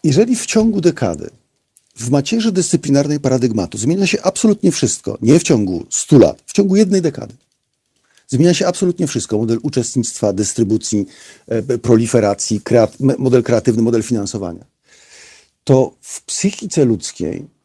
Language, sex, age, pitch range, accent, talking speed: Polish, male, 50-69, 120-175 Hz, native, 135 wpm